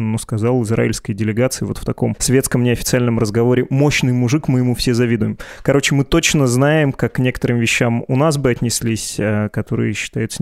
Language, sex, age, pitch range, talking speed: Russian, male, 20-39, 115-130 Hz, 175 wpm